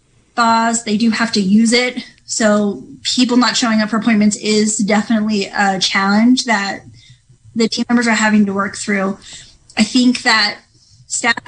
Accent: American